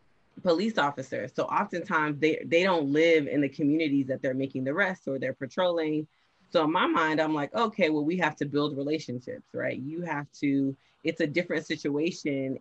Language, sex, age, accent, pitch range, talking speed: English, female, 30-49, American, 140-165 Hz, 190 wpm